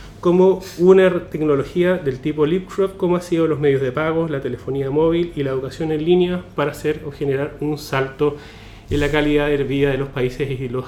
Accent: Argentinian